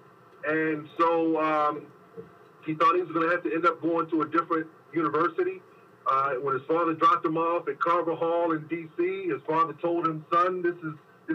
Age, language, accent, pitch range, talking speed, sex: 30-49, English, American, 150-215 Hz, 190 wpm, male